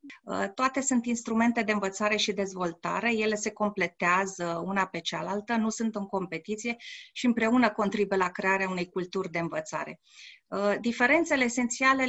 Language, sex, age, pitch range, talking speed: Romanian, female, 30-49, 190-225 Hz, 140 wpm